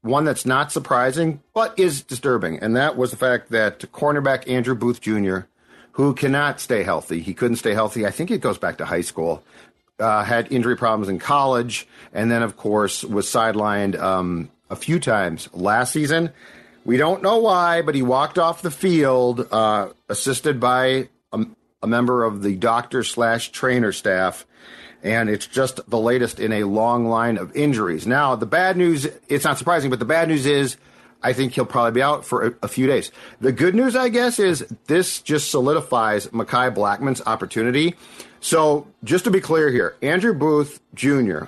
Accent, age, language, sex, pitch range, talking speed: American, 50-69, English, male, 115-150 Hz, 180 wpm